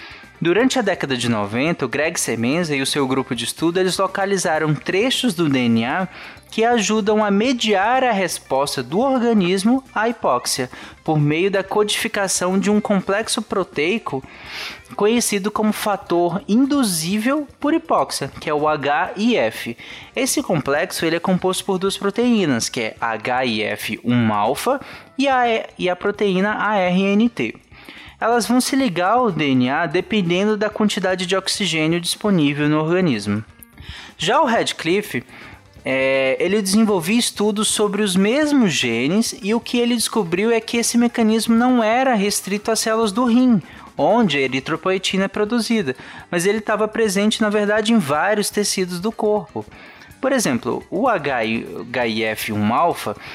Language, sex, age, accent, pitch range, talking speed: Portuguese, male, 20-39, Brazilian, 160-220 Hz, 135 wpm